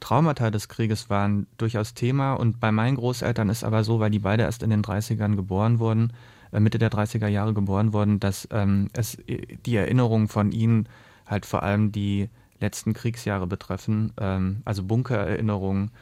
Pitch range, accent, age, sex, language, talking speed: 105-115 Hz, German, 30-49, male, German, 170 wpm